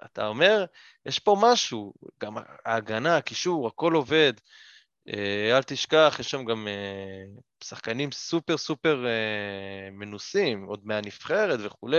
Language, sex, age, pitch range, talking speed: English, male, 20-39, 105-150 Hz, 110 wpm